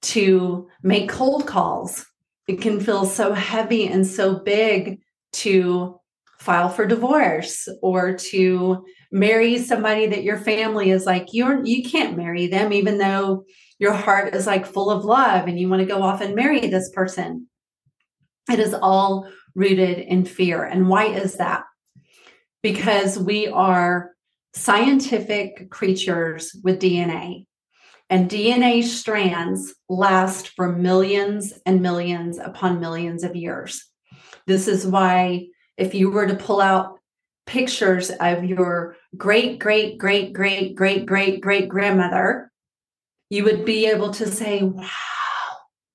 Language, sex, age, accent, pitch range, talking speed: English, female, 30-49, American, 185-215 Hz, 135 wpm